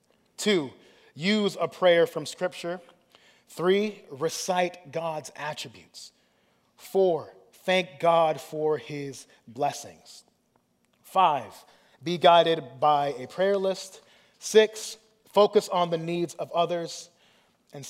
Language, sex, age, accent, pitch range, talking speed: English, male, 30-49, American, 145-175 Hz, 105 wpm